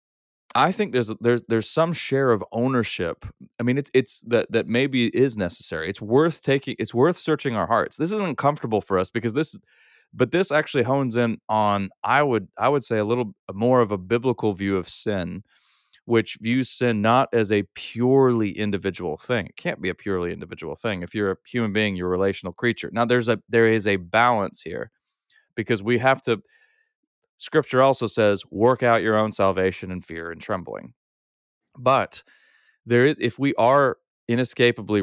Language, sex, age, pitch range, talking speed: English, male, 30-49, 100-125 Hz, 185 wpm